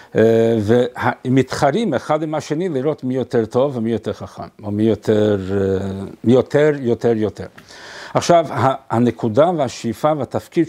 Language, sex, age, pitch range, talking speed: Hebrew, male, 50-69, 105-130 Hz, 130 wpm